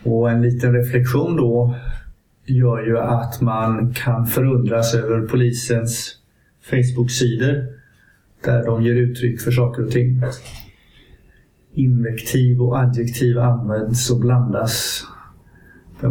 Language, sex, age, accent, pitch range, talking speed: Swedish, male, 50-69, native, 115-125 Hz, 110 wpm